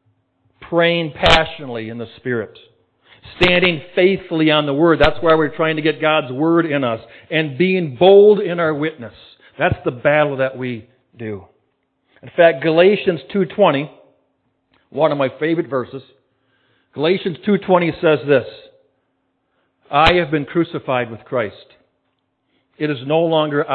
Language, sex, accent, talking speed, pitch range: English, male, American, 140 wpm, 130-175 Hz